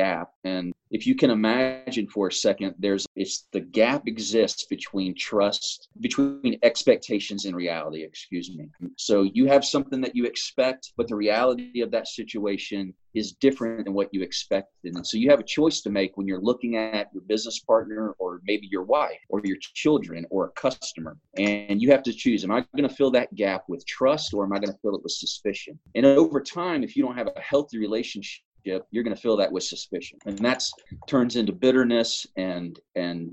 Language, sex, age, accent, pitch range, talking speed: English, male, 30-49, American, 100-130 Hz, 200 wpm